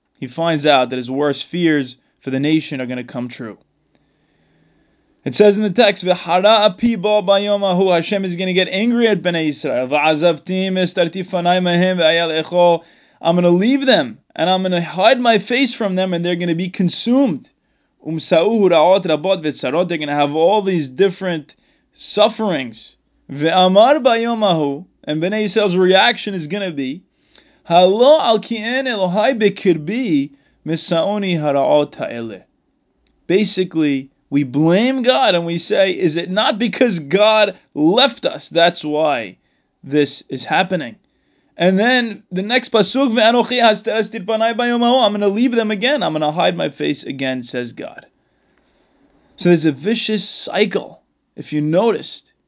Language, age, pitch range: English, 20-39, 155-215 Hz